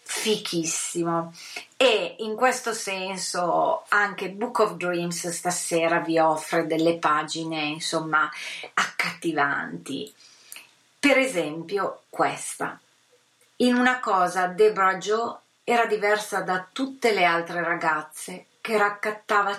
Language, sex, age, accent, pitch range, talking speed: Italian, female, 30-49, native, 170-220 Hz, 100 wpm